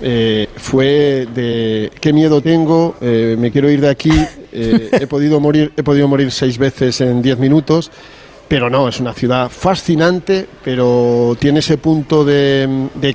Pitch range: 125-160 Hz